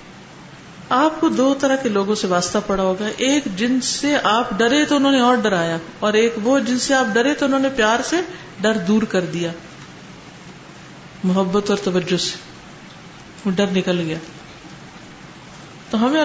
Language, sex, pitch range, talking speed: Urdu, female, 190-260 Hz, 165 wpm